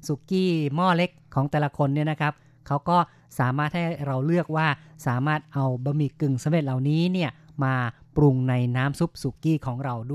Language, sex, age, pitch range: Thai, female, 30-49, 140-165 Hz